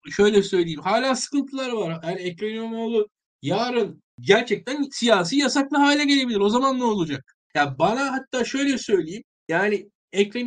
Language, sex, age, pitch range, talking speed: Turkish, male, 50-69, 195-255 Hz, 150 wpm